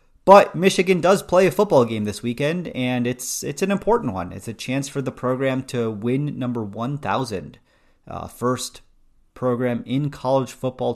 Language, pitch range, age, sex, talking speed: English, 105-140 Hz, 30-49, male, 170 wpm